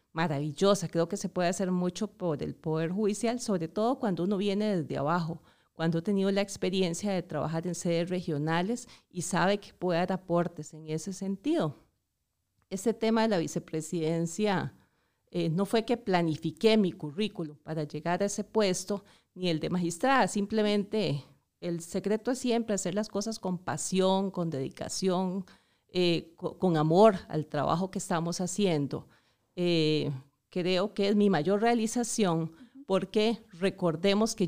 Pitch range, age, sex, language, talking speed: 165-205 Hz, 40-59, female, Spanish, 155 wpm